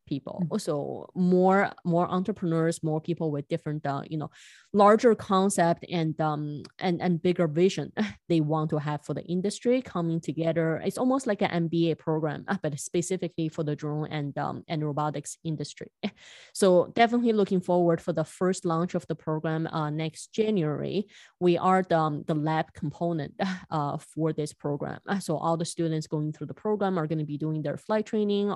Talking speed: 180 wpm